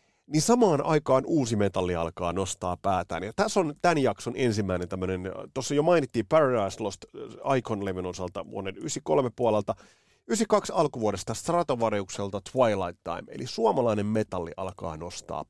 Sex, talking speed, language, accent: male, 135 wpm, Finnish, native